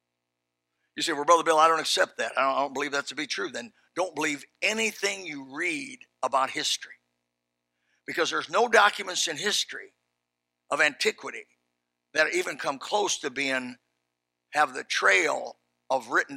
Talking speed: 165 wpm